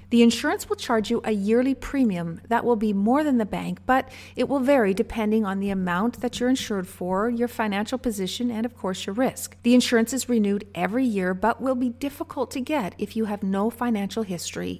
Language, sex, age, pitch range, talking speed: English, female, 40-59, 200-255 Hz, 215 wpm